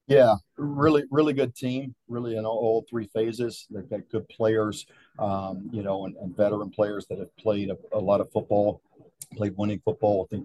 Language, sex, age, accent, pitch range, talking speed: English, male, 40-59, American, 95-110 Hz, 200 wpm